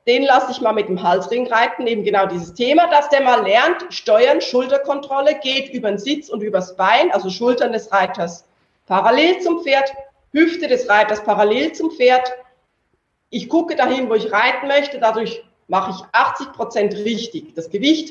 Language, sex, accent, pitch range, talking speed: German, female, German, 210-280 Hz, 170 wpm